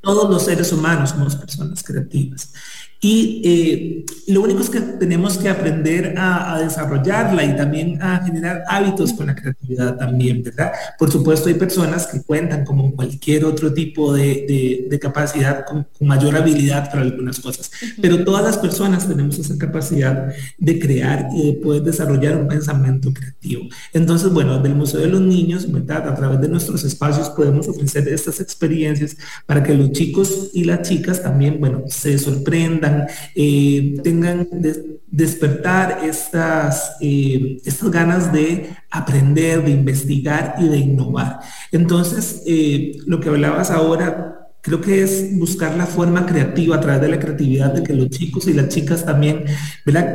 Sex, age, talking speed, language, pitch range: male, 30-49, 160 wpm, English, 145-175 Hz